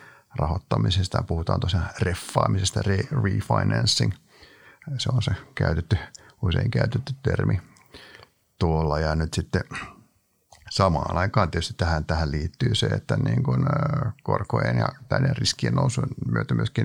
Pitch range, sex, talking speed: 90-130 Hz, male, 120 wpm